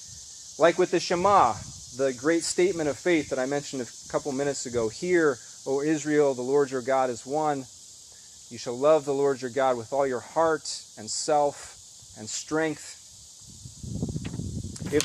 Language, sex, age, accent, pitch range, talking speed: English, male, 30-49, American, 120-185 Hz, 165 wpm